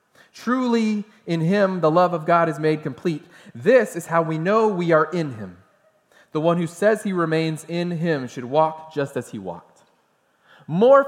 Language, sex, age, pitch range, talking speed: English, male, 30-49, 170-225 Hz, 185 wpm